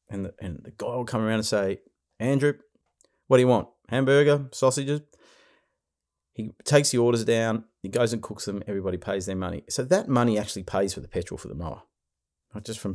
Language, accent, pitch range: English, Australian, 90-115 Hz